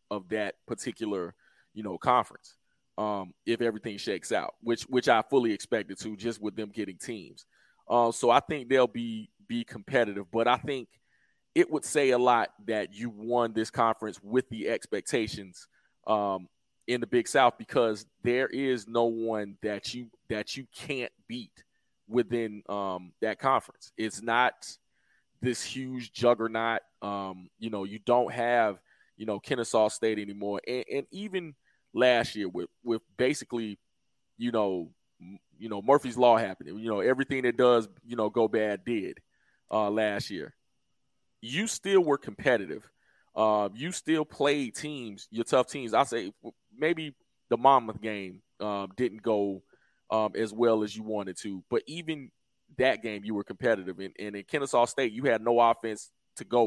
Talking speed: 165 wpm